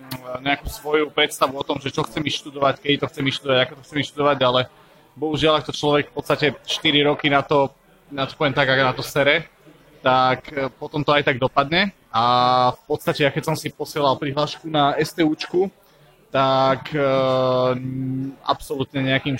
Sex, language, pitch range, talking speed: male, Slovak, 135-155 Hz, 175 wpm